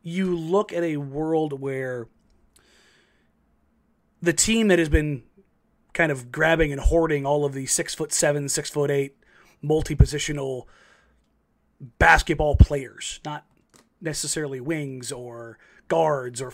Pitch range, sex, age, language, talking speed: 130-175 Hz, male, 30-49, English, 120 wpm